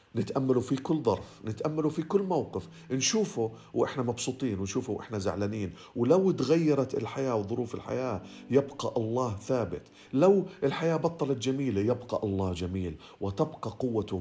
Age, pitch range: 50-69, 105-145 Hz